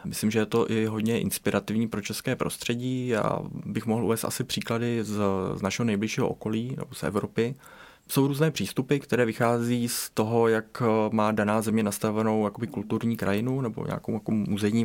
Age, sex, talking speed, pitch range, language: 20-39, male, 170 wpm, 100-115 Hz, Czech